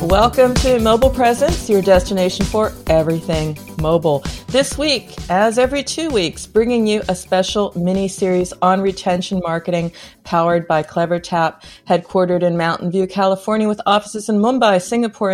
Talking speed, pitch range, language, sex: 140 wpm, 175-220 Hz, English, female